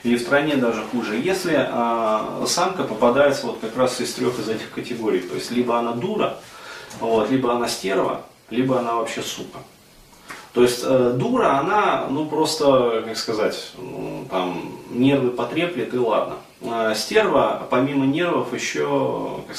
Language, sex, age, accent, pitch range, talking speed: Russian, male, 30-49, native, 110-135 Hz, 155 wpm